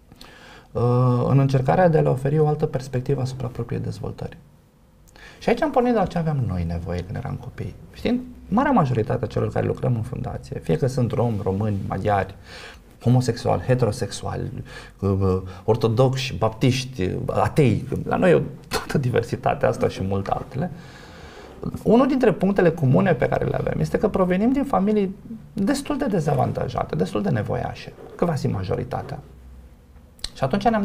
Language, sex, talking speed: Romanian, male, 155 wpm